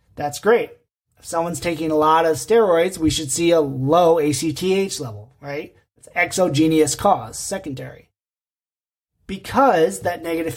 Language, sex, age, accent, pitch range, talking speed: English, male, 30-49, American, 145-185 Hz, 135 wpm